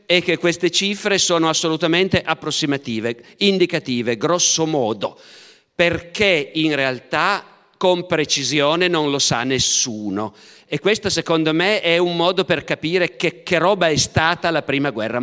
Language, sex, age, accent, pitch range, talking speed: Italian, male, 50-69, native, 145-180 Hz, 140 wpm